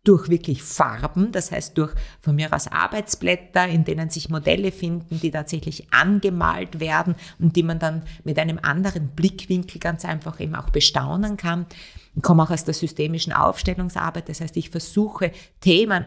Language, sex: German, female